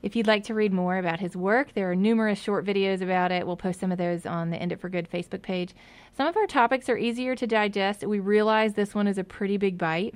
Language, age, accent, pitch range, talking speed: English, 30-49, American, 175-210 Hz, 270 wpm